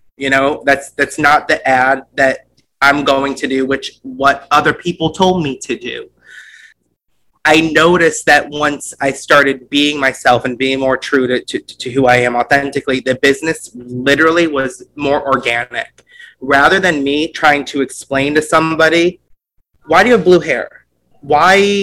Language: English